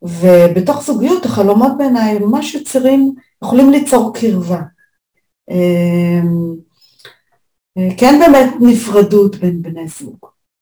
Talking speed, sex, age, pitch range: 115 wpm, female, 40-59, 180-230 Hz